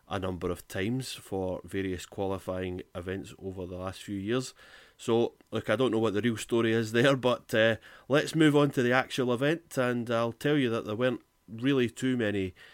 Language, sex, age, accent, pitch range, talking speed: English, male, 30-49, British, 100-125 Hz, 205 wpm